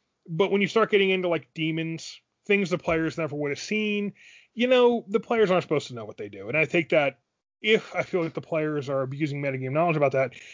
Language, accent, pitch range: English, American, 150-195 Hz